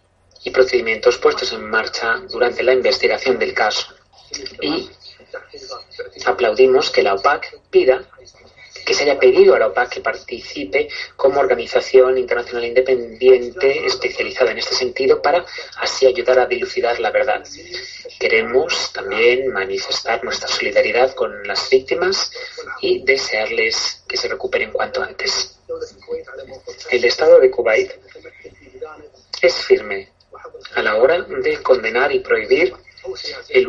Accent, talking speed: Spanish, 125 wpm